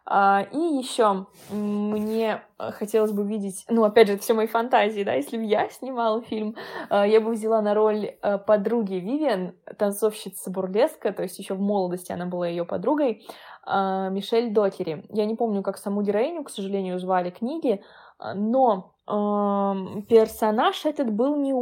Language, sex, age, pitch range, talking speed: Russian, female, 20-39, 195-240 Hz, 160 wpm